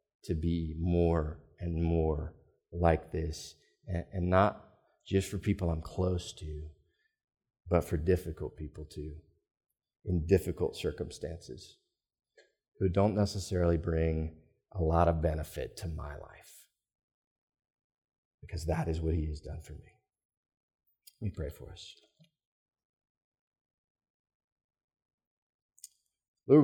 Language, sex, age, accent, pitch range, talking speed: English, male, 40-59, American, 85-105 Hz, 110 wpm